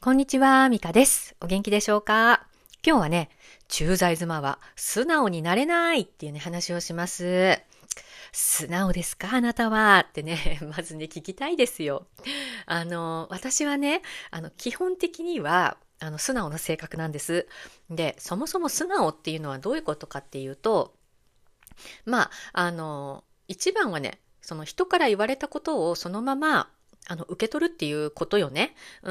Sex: female